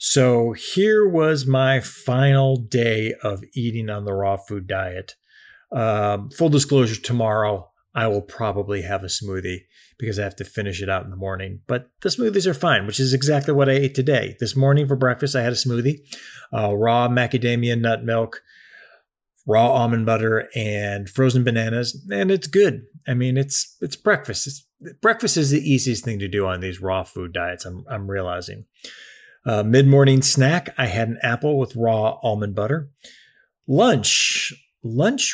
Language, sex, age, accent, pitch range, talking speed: English, male, 30-49, American, 110-140 Hz, 170 wpm